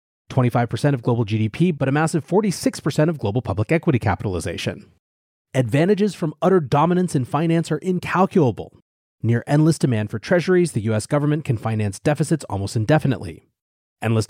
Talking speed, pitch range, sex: 145 wpm, 115-165 Hz, male